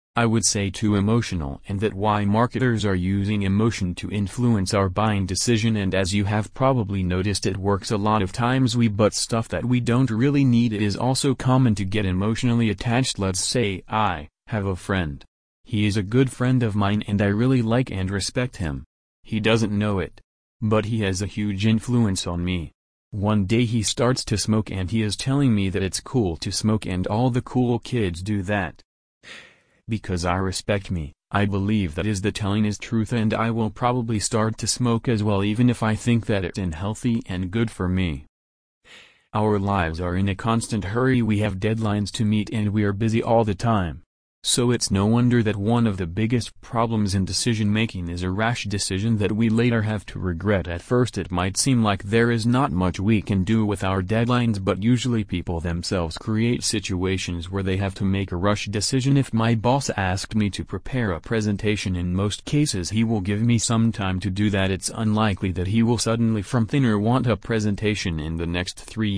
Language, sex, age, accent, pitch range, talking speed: English, male, 30-49, American, 95-115 Hz, 210 wpm